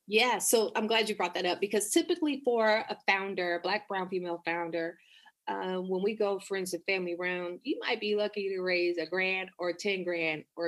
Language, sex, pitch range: English, female, 180-250 Hz